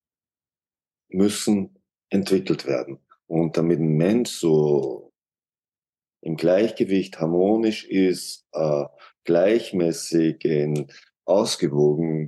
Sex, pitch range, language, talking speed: male, 75-95 Hz, German, 75 wpm